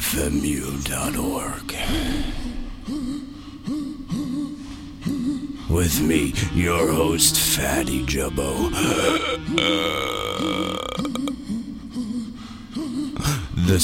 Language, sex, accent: English, male, American